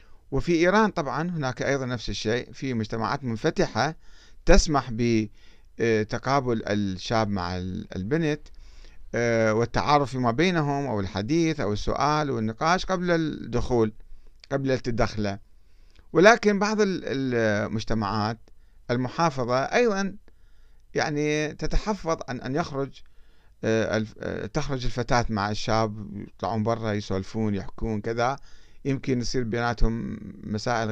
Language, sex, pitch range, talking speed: Arabic, male, 105-140 Hz, 95 wpm